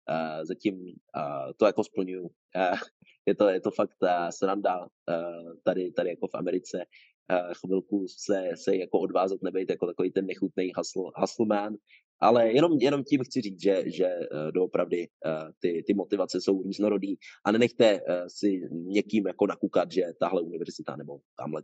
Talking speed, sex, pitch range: 170 wpm, male, 90-115 Hz